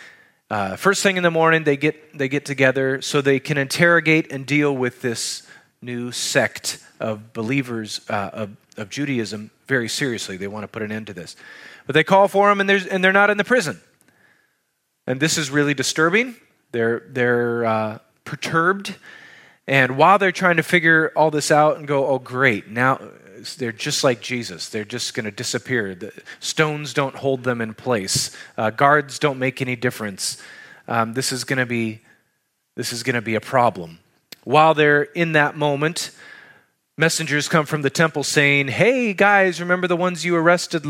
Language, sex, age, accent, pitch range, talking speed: English, male, 30-49, American, 125-170 Hz, 190 wpm